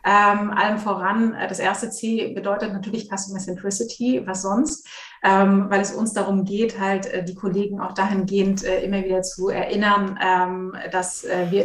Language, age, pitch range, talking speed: German, 30-49, 190-215 Hz, 165 wpm